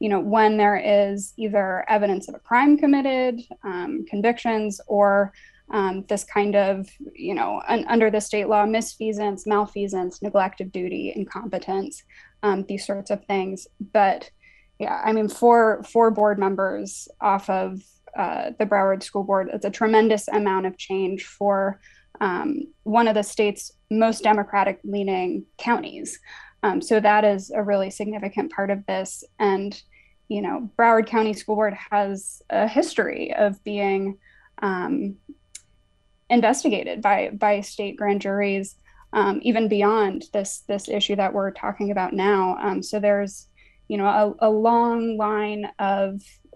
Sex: female